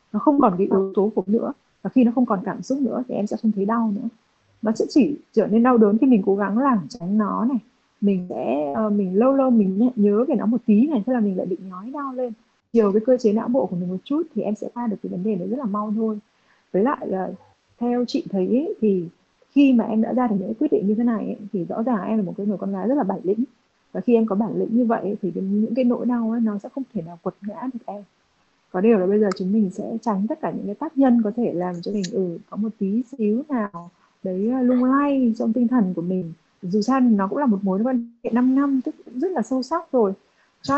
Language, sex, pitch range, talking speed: Vietnamese, female, 200-250 Hz, 280 wpm